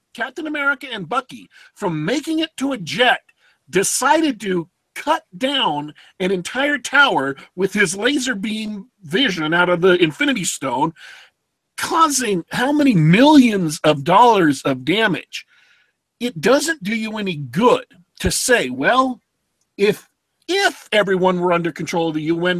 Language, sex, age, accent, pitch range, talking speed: English, male, 40-59, American, 165-265 Hz, 140 wpm